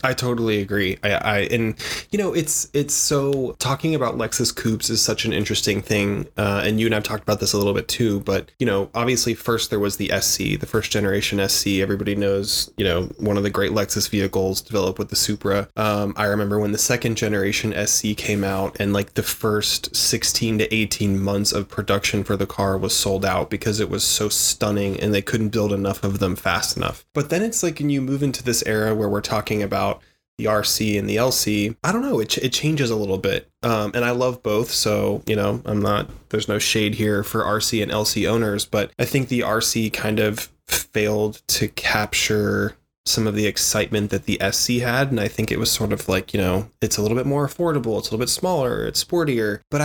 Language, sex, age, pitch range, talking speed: English, male, 20-39, 100-120 Hz, 230 wpm